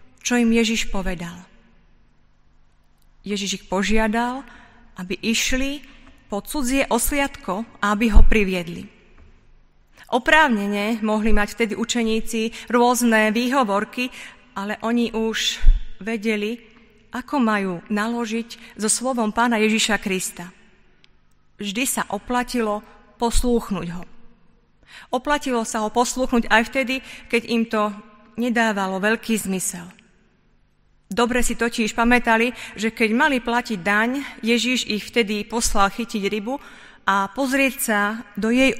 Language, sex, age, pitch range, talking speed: Slovak, female, 30-49, 210-245 Hz, 110 wpm